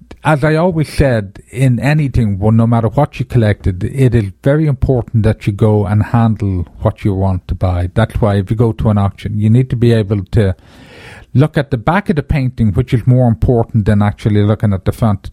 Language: English